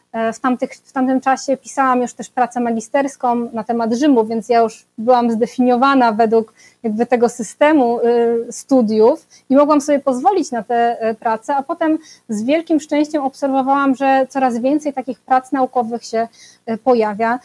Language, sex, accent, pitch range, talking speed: Polish, female, native, 235-275 Hz, 145 wpm